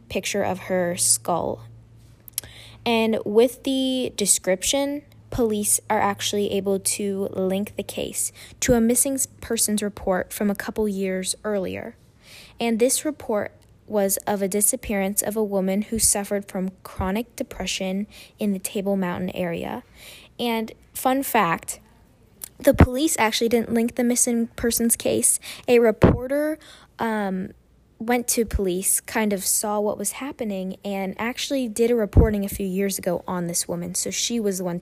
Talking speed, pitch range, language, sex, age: 150 wpm, 195-235 Hz, English, female, 10-29